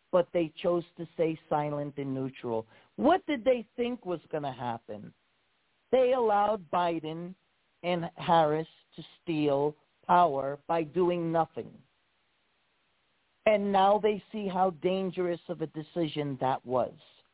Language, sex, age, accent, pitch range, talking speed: English, male, 40-59, American, 165-215 Hz, 130 wpm